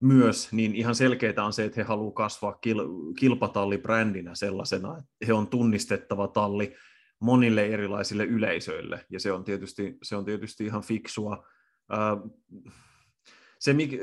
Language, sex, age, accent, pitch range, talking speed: Finnish, male, 30-49, native, 100-115 Hz, 130 wpm